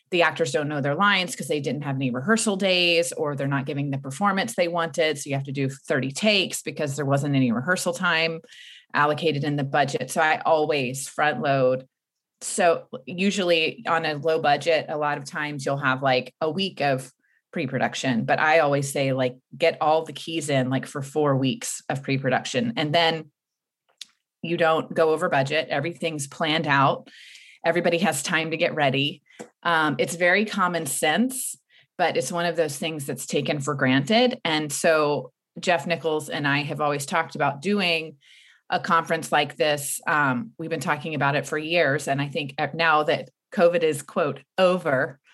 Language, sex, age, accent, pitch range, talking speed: English, female, 30-49, American, 140-170 Hz, 185 wpm